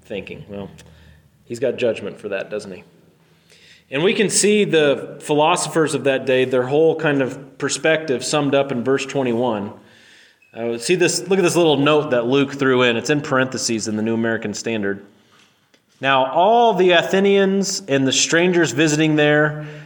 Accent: American